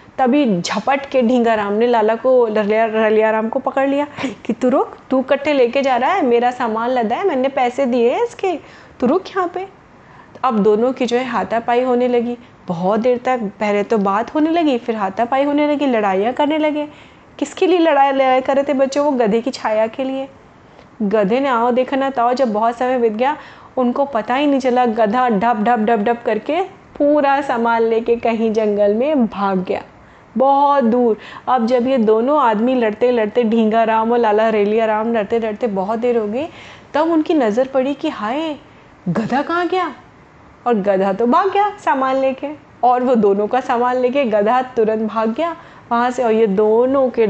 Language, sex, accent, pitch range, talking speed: Hindi, female, native, 220-275 Hz, 195 wpm